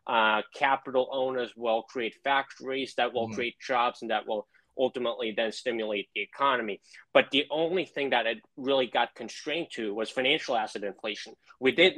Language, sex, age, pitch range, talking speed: English, male, 20-39, 115-135 Hz, 170 wpm